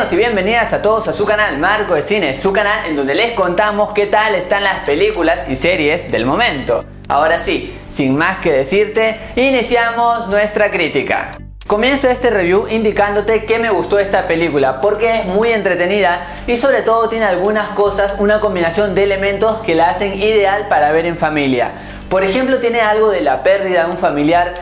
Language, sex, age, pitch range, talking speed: Spanish, male, 20-39, 175-210 Hz, 185 wpm